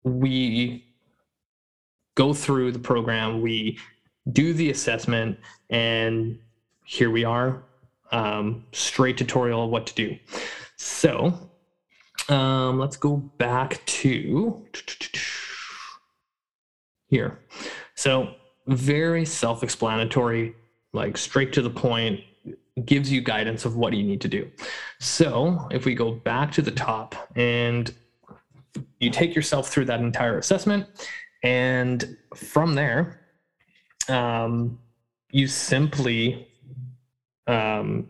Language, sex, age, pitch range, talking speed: English, male, 20-39, 115-145 Hz, 105 wpm